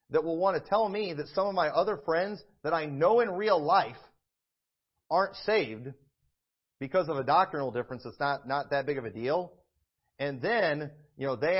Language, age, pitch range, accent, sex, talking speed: English, 40-59, 135-180 Hz, American, male, 195 wpm